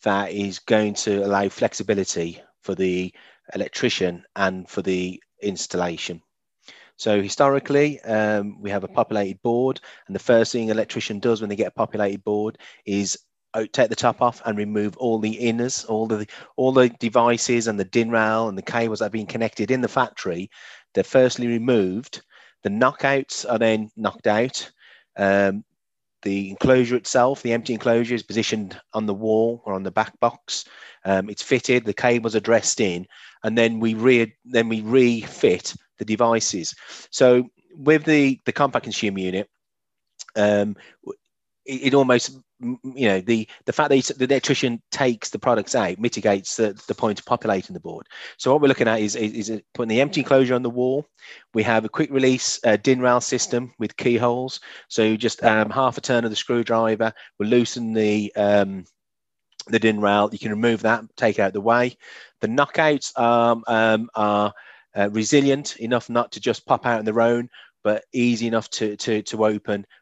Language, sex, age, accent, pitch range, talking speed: English, male, 30-49, British, 105-125 Hz, 180 wpm